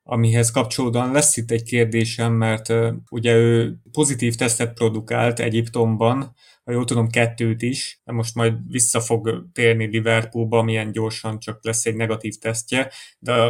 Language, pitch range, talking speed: English, 115-120 Hz, 145 wpm